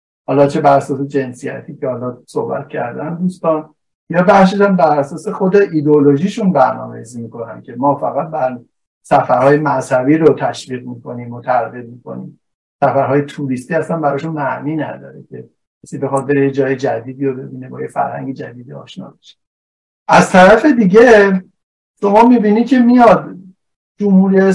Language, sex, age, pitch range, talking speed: Persian, male, 60-79, 120-170 Hz, 140 wpm